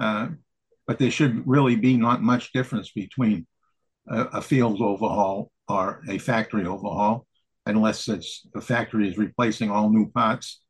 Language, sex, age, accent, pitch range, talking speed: English, male, 60-79, American, 110-135 Hz, 150 wpm